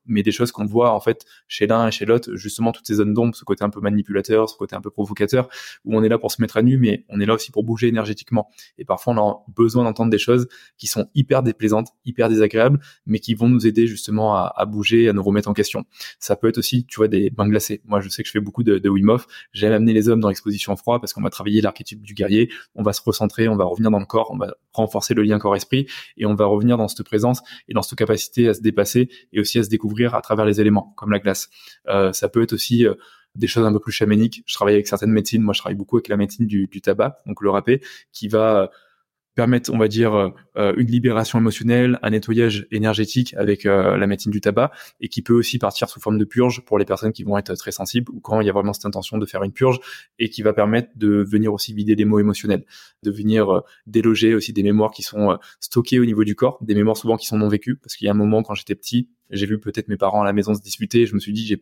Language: French